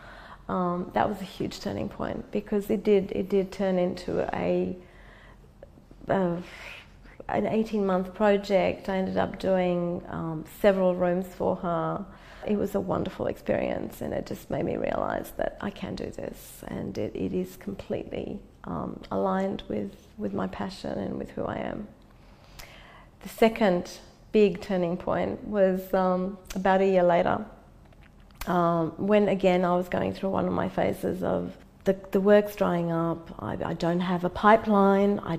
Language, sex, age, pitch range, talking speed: English, female, 30-49, 175-200 Hz, 160 wpm